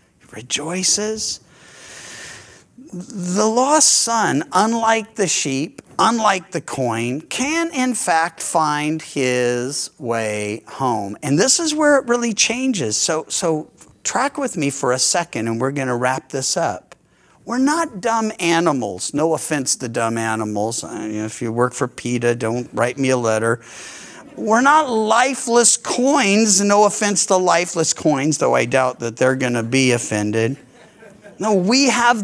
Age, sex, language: 50-69, male, English